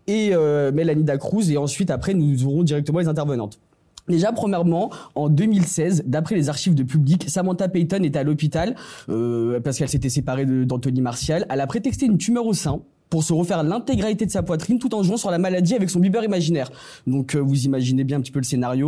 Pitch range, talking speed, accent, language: 140-190 Hz, 215 wpm, French, French